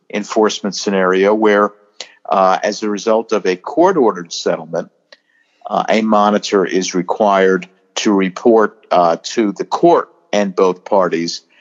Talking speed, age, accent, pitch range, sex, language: 130 wpm, 50-69, American, 90-105 Hz, male, English